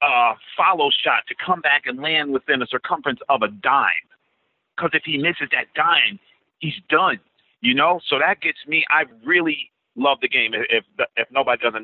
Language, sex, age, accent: English, male, 40-59, American